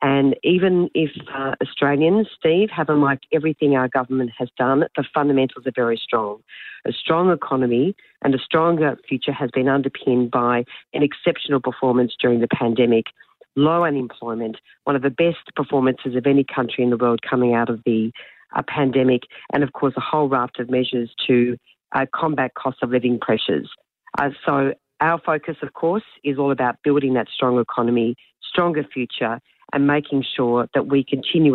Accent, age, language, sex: Australian, 40-59, English, female